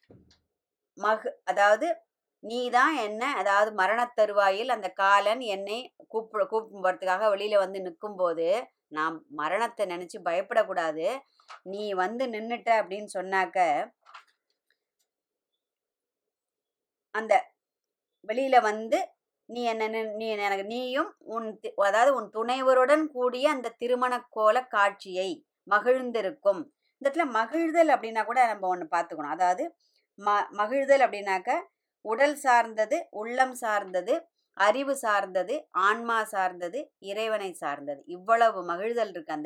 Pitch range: 195-275 Hz